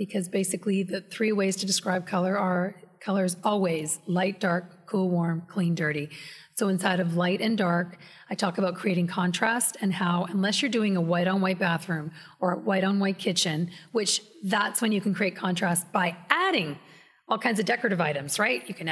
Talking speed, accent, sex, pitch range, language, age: 195 wpm, American, female, 175-205 Hz, English, 30-49